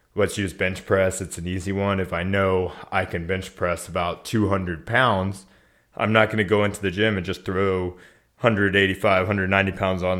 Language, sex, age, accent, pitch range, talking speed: English, male, 20-39, American, 90-105 Hz, 190 wpm